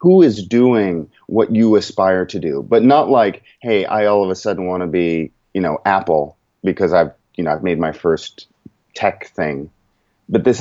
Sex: male